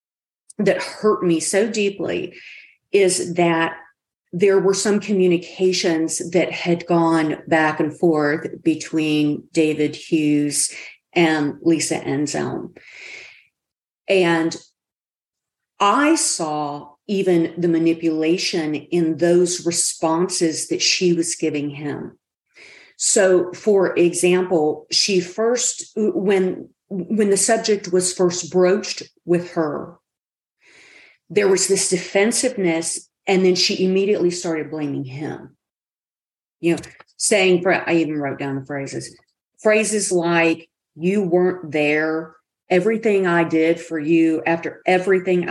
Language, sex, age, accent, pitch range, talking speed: English, female, 50-69, American, 160-190 Hz, 110 wpm